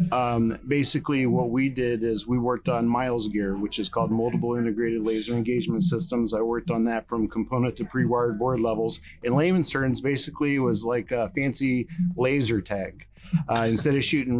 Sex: male